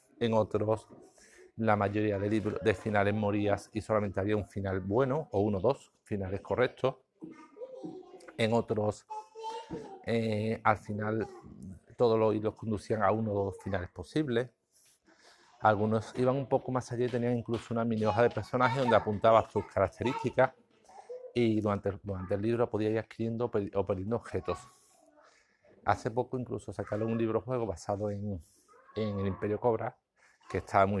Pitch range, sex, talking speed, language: 100-120 Hz, male, 160 wpm, Spanish